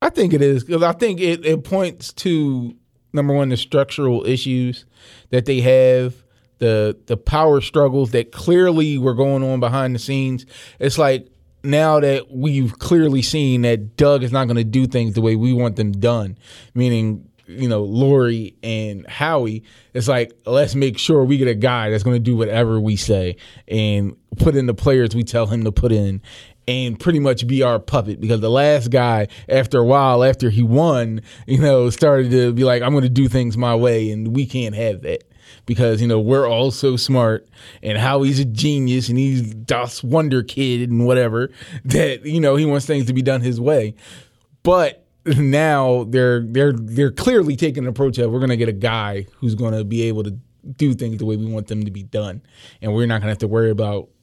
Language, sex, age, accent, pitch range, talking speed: English, male, 20-39, American, 115-135 Hz, 210 wpm